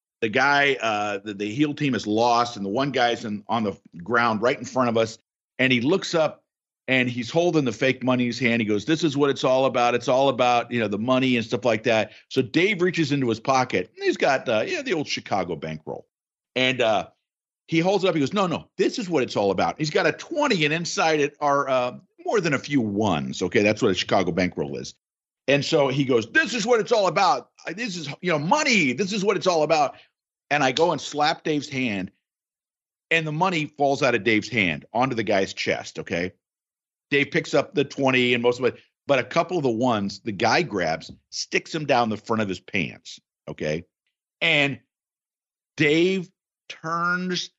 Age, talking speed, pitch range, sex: 50-69, 225 wpm, 115-155 Hz, male